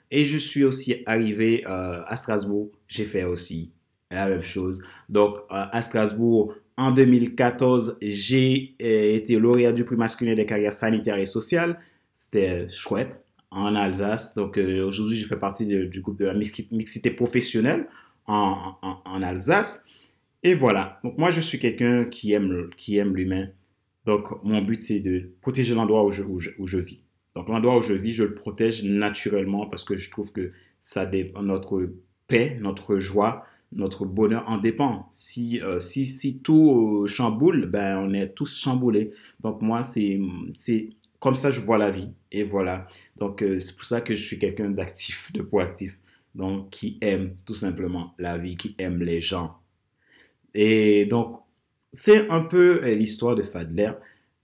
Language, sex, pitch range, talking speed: French, male, 95-115 Hz, 175 wpm